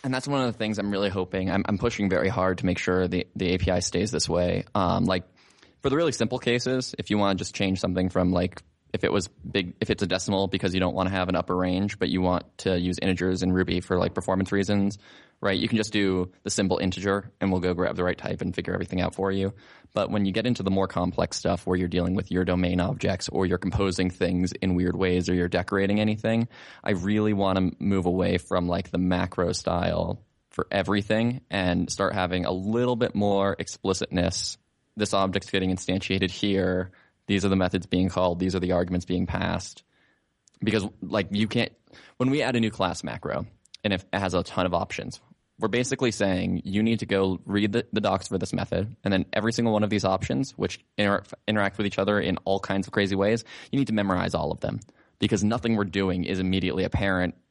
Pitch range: 90-105 Hz